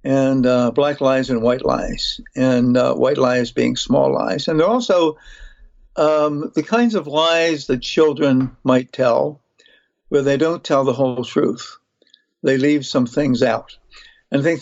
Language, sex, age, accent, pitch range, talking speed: English, male, 60-79, American, 130-160 Hz, 170 wpm